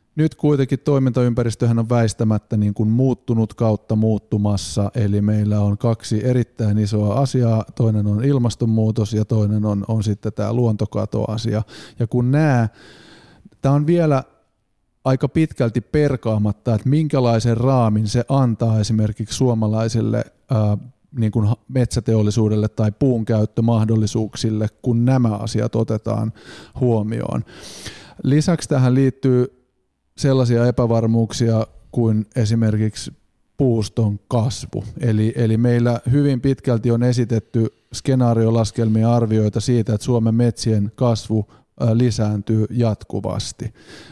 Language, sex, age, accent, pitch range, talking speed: Finnish, male, 30-49, native, 105-120 Hz, 110 wpm